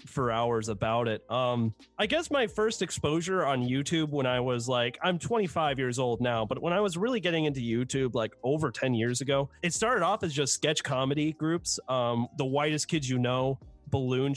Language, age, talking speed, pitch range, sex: English, 30-49, 205 wpm, 125-165 Hz, male